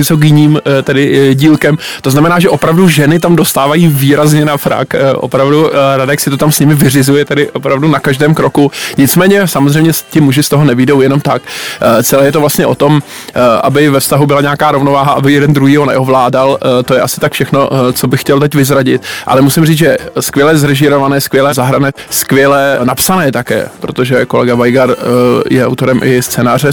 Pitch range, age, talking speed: 130-150 Hz, 20-39, 175 wpm